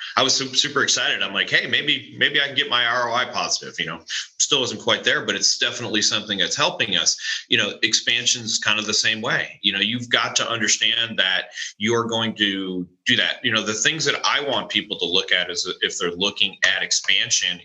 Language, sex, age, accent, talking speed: English, male, 30-49, American, 220 wpm